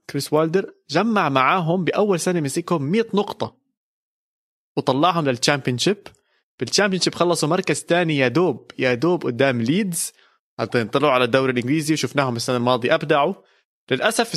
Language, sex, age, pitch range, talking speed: Arabic, male, 20-39, 130-175 Hz, 115 wpm